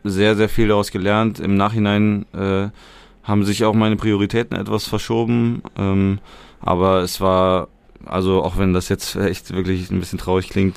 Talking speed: 165 wpm